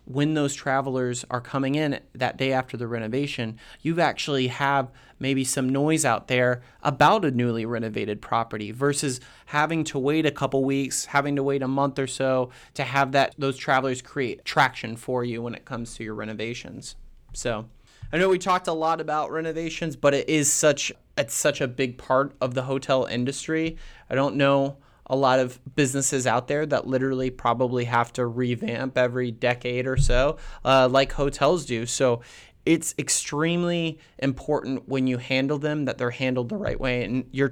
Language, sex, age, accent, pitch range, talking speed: English, male, 30-49, American, 125-145 Hz, 180 wpm